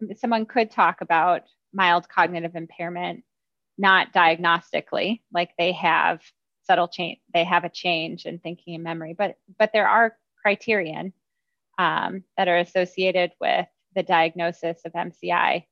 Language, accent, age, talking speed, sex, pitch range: English, American, 20-39, 135 wpm, female, 170-195 Hz